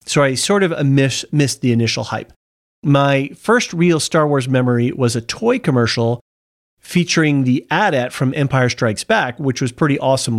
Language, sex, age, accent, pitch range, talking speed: English, male, 40-59, American, 120-160 Hz, 175 wpm